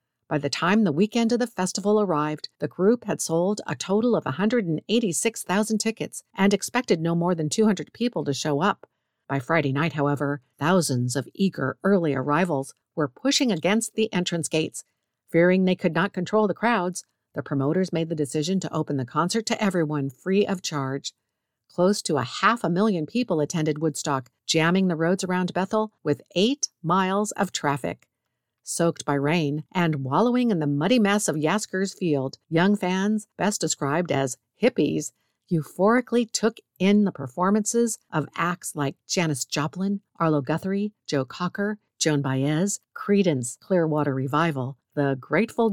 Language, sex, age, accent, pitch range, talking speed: English, female, 50-69, American, 150-200 Hz, 160 wpm